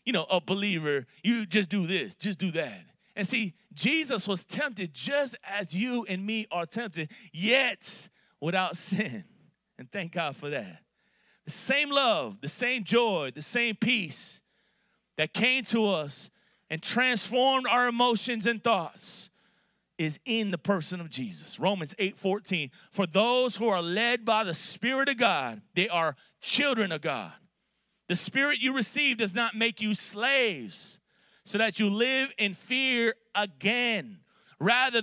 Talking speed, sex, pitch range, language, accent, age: 155 wpm, male, 185-230 Hz, English, American, 30-49